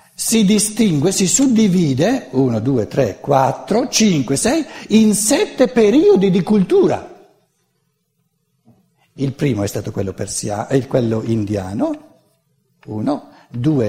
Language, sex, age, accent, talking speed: Italian, male, 60-79, native, 105 wpm